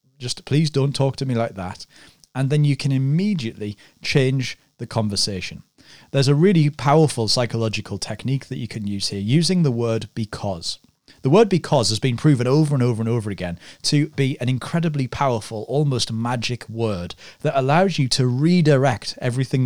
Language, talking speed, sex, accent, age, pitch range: English, 175 wpm, male, British, 30-49, 110-145 Hz